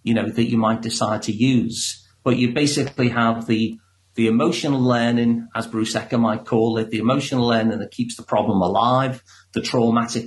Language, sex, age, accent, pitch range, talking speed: English, male, 40-59, British, 110-125 Hz, 185 wpm